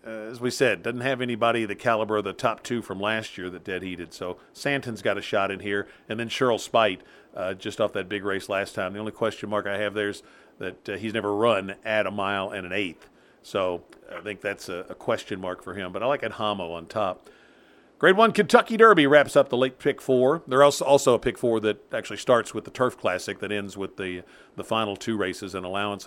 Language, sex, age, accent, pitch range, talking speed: English, male, 50-69, American, 105-135 Hz, 240 wpm